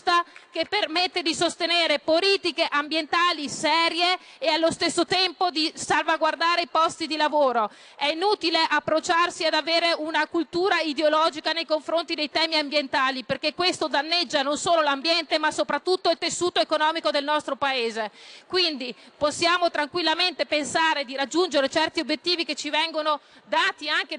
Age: 40-59